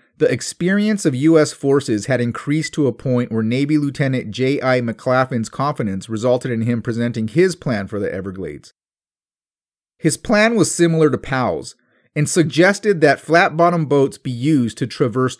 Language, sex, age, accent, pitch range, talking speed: English, male, 30-49, American, 120-165 Hz, 155 wpm